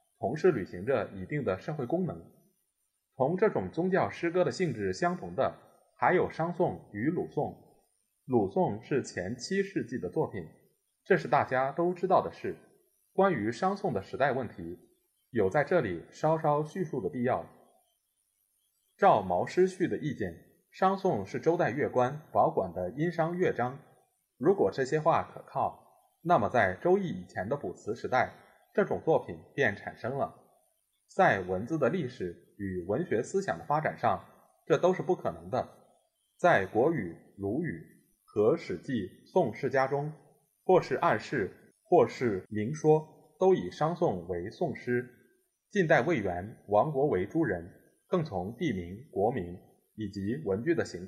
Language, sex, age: Chinese, male, 20-39